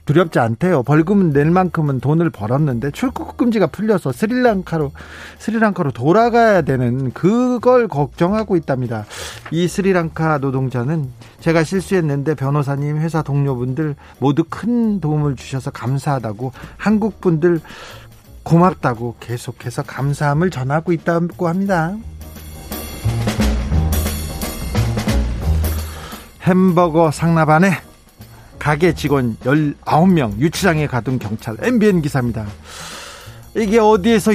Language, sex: Korean, male